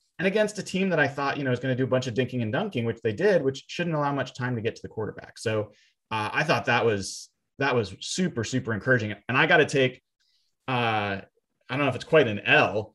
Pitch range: 115-145 Hz